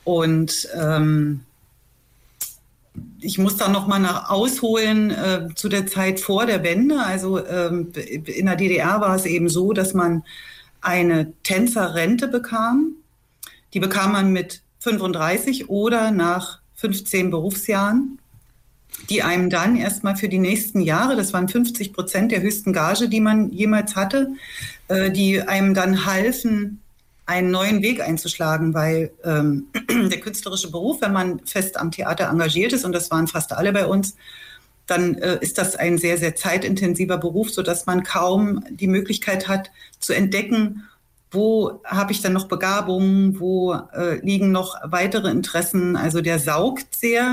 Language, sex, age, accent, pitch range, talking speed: German, female, 40-59, German, 170-210 Hz, 150 wpm